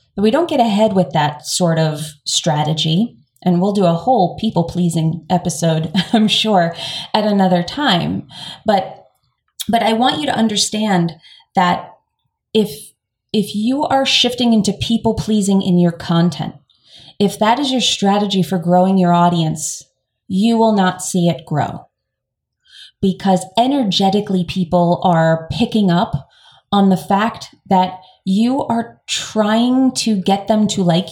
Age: 30-49